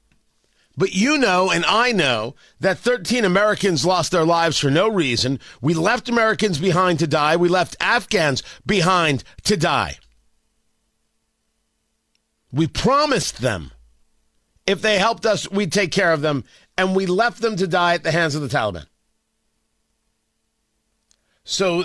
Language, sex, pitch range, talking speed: English, male, 145-190 Hz, 145 wpm